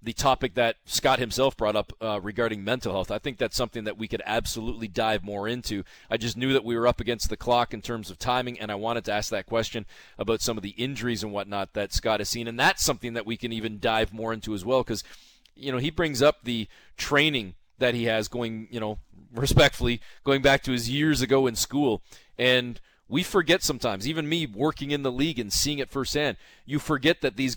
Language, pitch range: English, 110-135 Hz